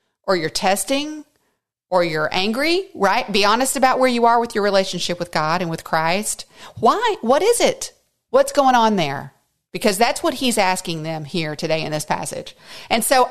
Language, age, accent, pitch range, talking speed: English, 40-59, American, 175-245 Hz, 190 wpm